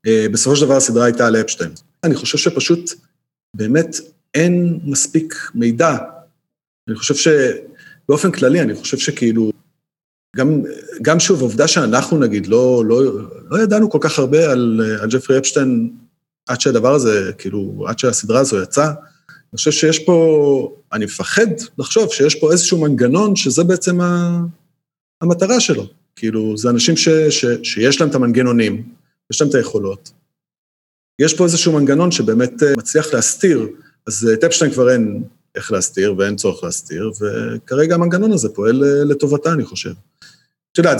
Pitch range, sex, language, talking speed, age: 120-165 Hz, male, Hebrew, 150 wpm, 40-59